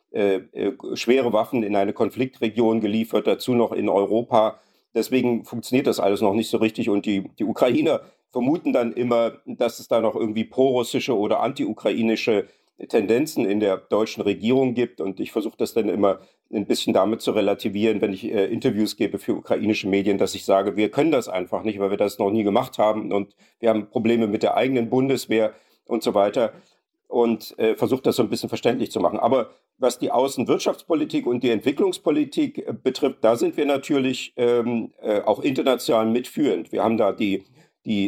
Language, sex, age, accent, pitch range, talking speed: German, male, 50-69, German, 105-125 Hz, 185 wpm